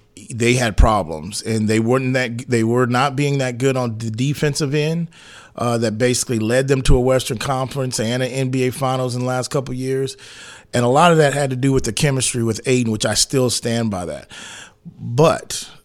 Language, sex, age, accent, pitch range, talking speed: English, male, 30-49, American, 115-145 Hz, 210 wpm